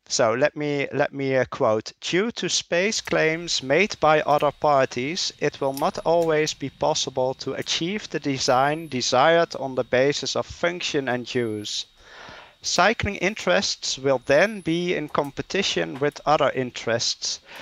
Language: English